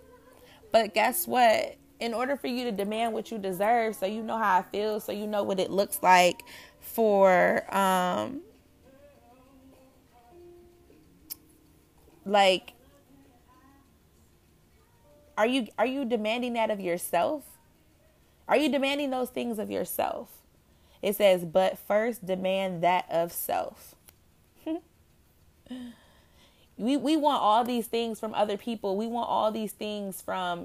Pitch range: 180-245 Hz